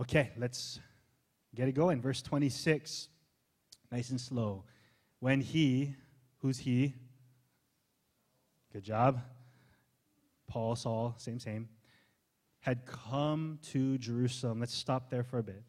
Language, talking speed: English, 115 wpm